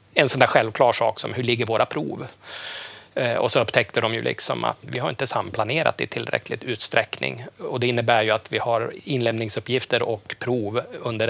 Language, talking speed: Swedish, 185 wpm